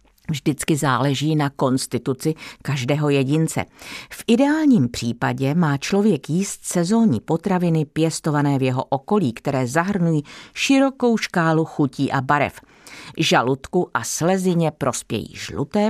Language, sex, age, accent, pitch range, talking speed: Czech, female, 50-69, native, 135-195 Hz, 115 wpm